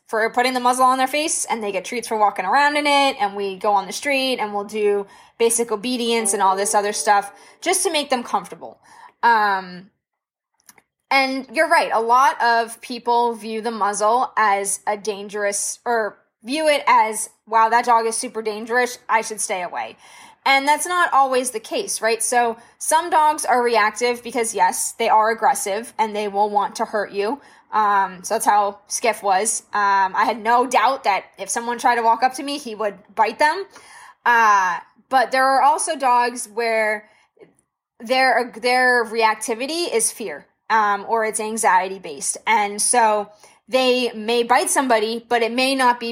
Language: English